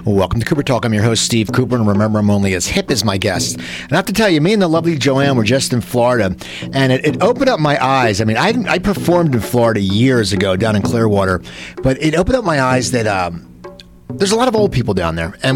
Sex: male